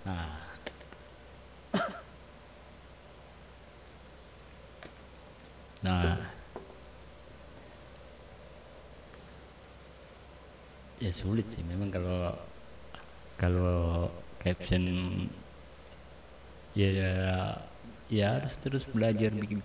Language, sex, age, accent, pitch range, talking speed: Indonesian, male, 50-69, native, 75-95 Hz, 45 wpm